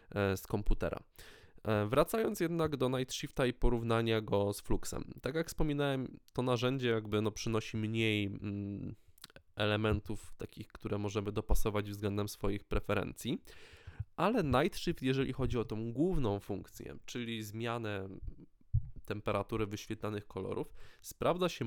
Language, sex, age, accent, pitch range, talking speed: Polish, male, 20-39, native, 105-125 Hz, 115 wpm